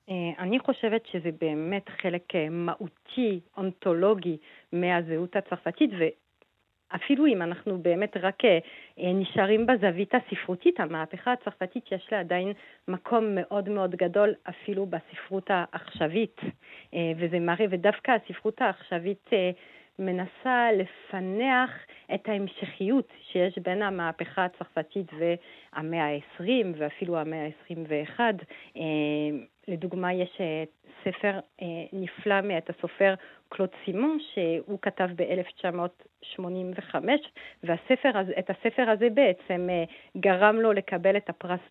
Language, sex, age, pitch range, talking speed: Hebrew, female, 40-59, 170-215 Hz, 100 wpm